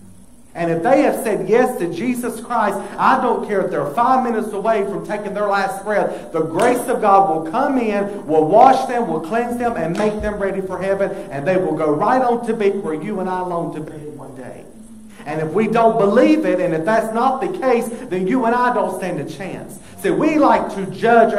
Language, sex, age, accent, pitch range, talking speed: English, male, 50-69, American, 170-225 Hz, 235 wpm